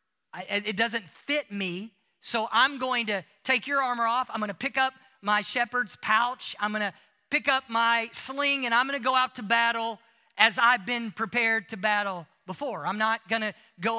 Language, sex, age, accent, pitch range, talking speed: English, male, 40-59, American, 190-245 Hz, 205 wpm